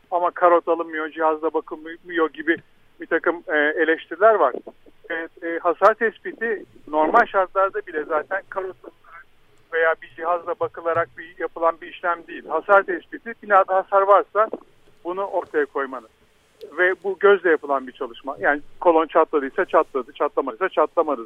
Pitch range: 165-195 Hz